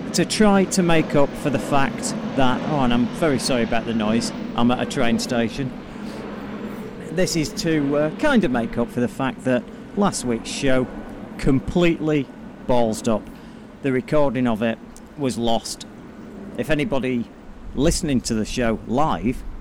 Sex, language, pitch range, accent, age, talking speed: male, English, 115-170 Hz, British, 40-59, 160 wpm